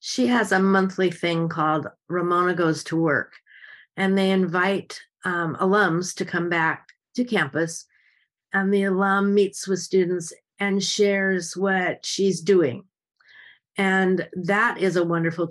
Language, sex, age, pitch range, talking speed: English, female, 50-69, 160-195 Hz, 140 wpm